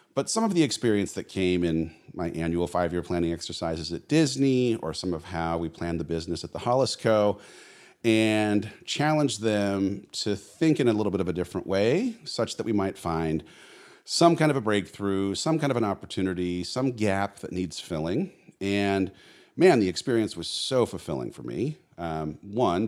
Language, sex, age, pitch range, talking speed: English, male, 40-59, 90-115 Hz, 185 wpm